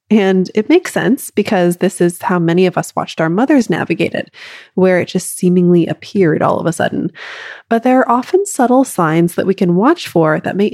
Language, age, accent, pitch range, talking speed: English, 20-39, American, 175-250 Hz, 210 wpm